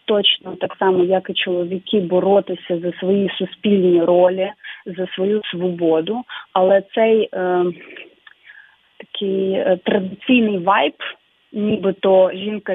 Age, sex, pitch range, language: 30-49, female, 180-220 Hz, Ukrainian